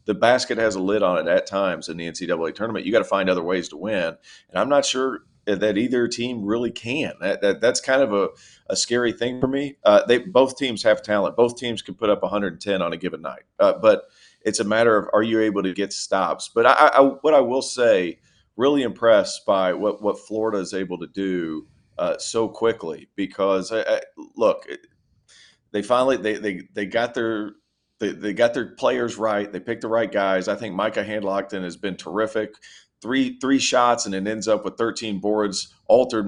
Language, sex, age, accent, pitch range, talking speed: English, male, 40-59, American, 100-125 Hz, 215 wpm